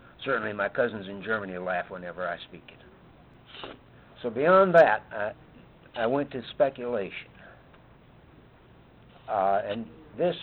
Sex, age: male, 60-79